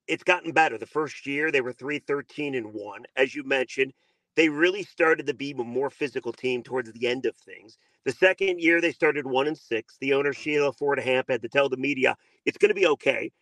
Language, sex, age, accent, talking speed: English, male, 40-59, American, 225 wpm